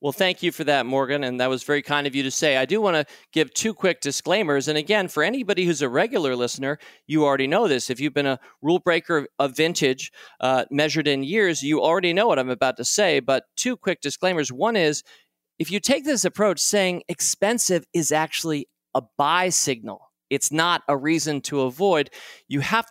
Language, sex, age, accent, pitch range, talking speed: English, male, 40-59, American, 140-185 Hz, 210 wpm